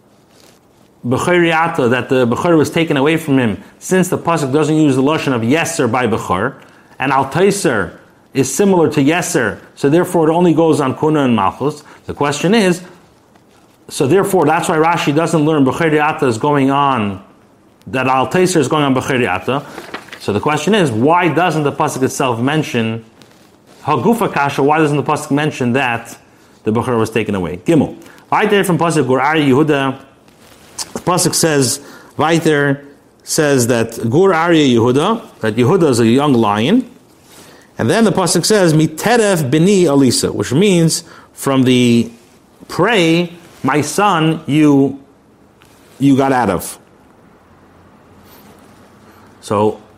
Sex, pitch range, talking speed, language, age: male, 125-170 Hz, 145 wpm, English, 30-49